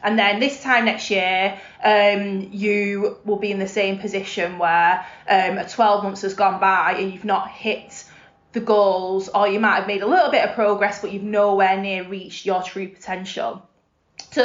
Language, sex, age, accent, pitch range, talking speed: English, female, 20-39, British, 195-240 Hz, 190 wpm